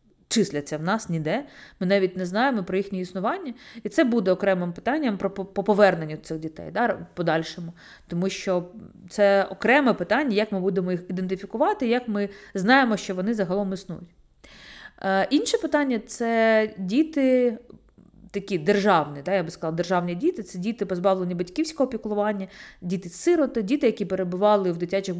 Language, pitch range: Ukrainian, 185-225 Hz